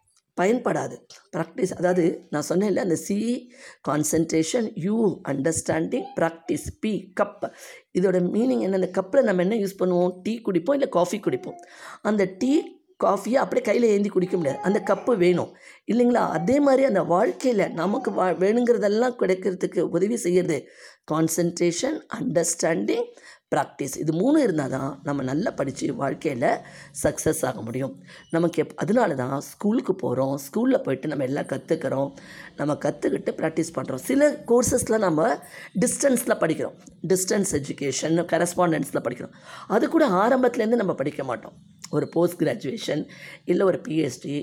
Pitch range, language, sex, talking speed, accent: 160-225 Hz, Tamil, female, 130 wpm, native